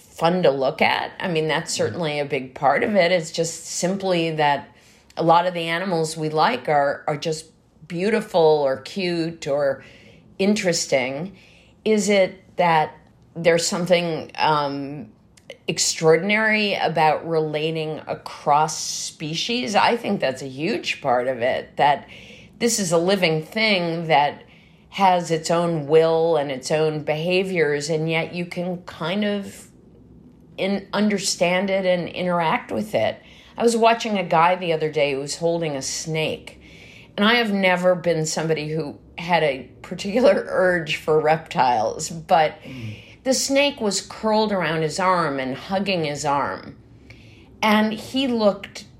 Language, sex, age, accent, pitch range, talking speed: English, female, 50-69, American, 155-195 Hz, 145 wpm